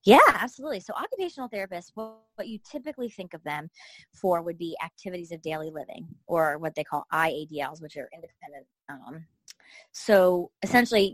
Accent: American